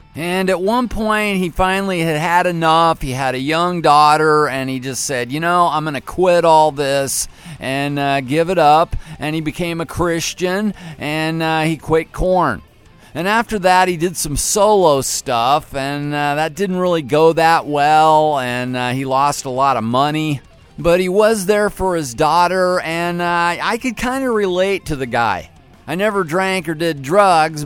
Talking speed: 190 wpm